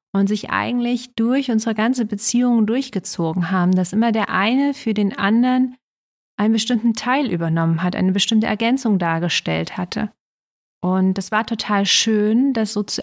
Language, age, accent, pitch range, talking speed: German, 30-49, German, 190-235 Hz, 155 wpm